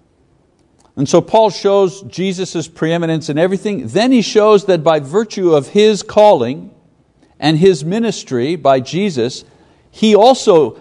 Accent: American